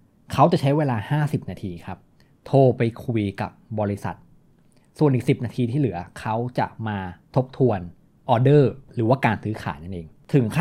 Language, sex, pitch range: Thai, male, 100-135 Hz